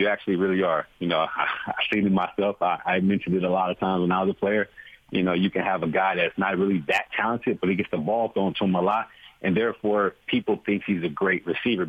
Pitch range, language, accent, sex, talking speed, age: 90-105 Hz, English, American, male, 275 wpm, 40-59